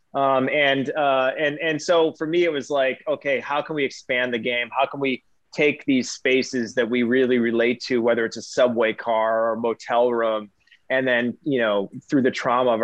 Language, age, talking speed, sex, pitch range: English, 20-39, 215 wpm, male, 120-145 Hz